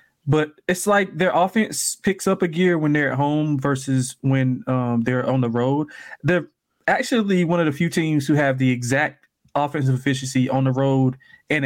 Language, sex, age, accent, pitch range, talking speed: English, male, 20-39, American, 130-155 Hz, 190 wpm